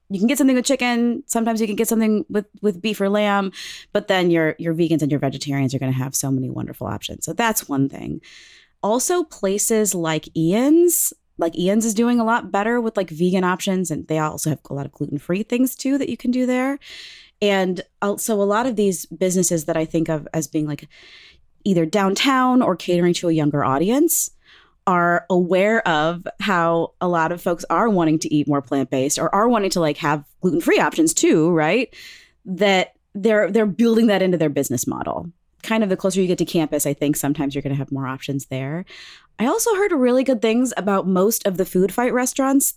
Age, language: 20-39, English